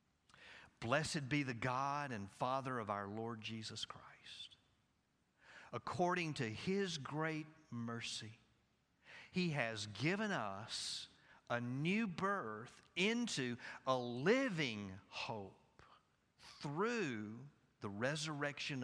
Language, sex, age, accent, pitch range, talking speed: English, male, 50-69, American, 115-155 Hz, 95 wpm